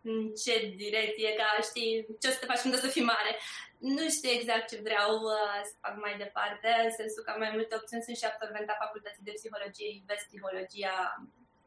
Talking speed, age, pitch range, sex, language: 185 wpm, 20-39, 215-270 Hz, female, Romanian